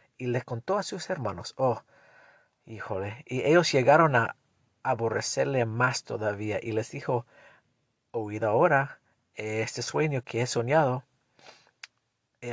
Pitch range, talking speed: 115-165 Hz, 125 wpm